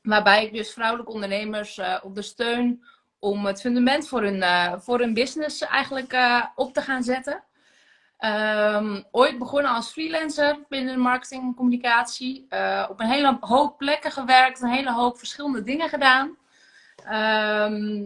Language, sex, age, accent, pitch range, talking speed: Dutch, female, 20-39, Dutch, 210-255 Hz, 160 wpm